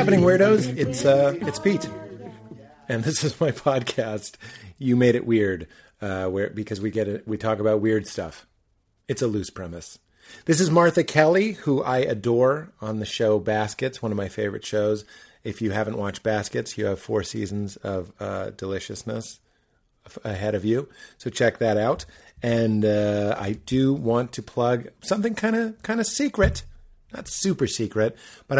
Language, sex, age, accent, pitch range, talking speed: English, male, 30-49, American, 105-130 Hz, 175 wpm